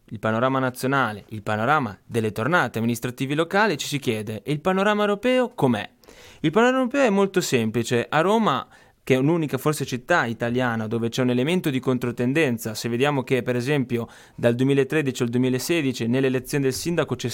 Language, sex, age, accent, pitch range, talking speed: Italian, male, 20-39, native, 120-155 Hz, 175 wpm